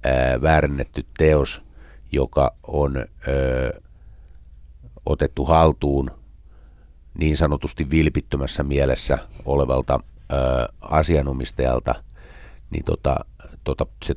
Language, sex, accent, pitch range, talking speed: Finnish, male, native, 65-85 Hz, 60 wpm